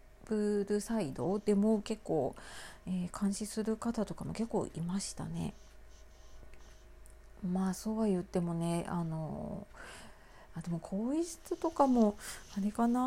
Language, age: Japanese, 40-59